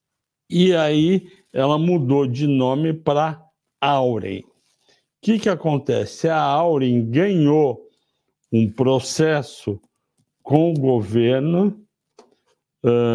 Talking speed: 100 wpm